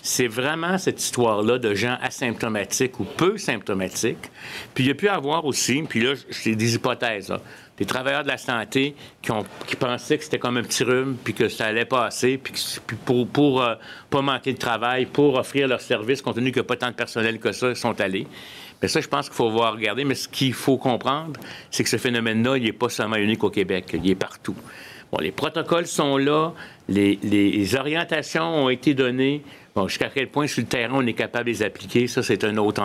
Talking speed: 225 wpm